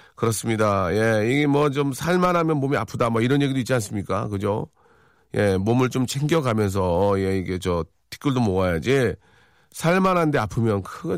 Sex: male